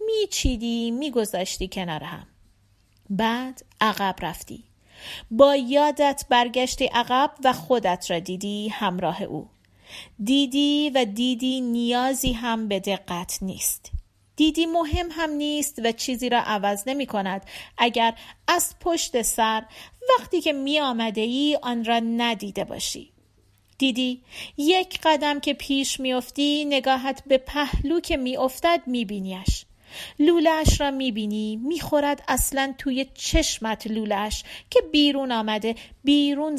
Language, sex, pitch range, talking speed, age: Persian, female, 215-290 Hz, 115 wpm, 40-59